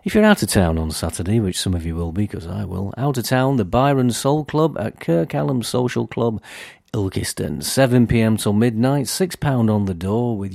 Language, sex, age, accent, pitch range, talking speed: English, male, 40-59, British, 100-130 Hz, 210 wpm